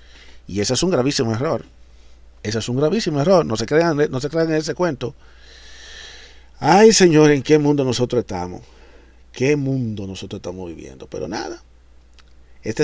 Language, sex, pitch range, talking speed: Spanish, male, 100-130 Hz, 155 wpm